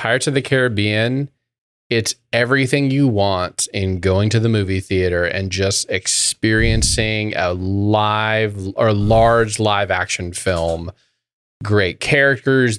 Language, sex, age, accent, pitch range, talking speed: English, male, 30-49, American, 90-115 Hz, 120 wpm